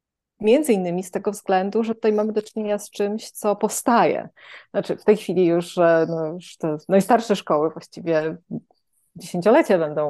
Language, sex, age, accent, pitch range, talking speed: Polish, female, 20-39, native, 165-205 Hz, 160 wpm